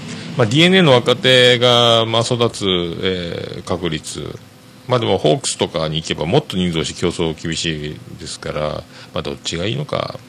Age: 40-59